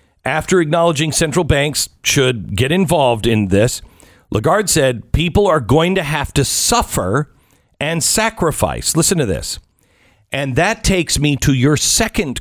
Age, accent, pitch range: 50-69, American, 115-185 Hz